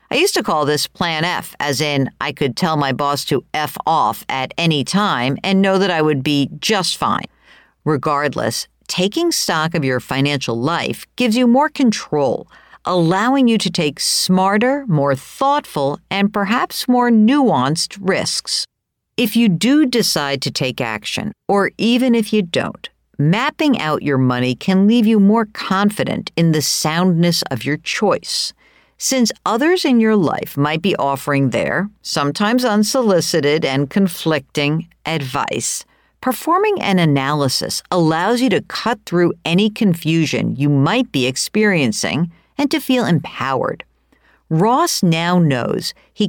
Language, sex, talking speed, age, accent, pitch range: English, female, 150 wpm, 50-69, American, 145-220 Hz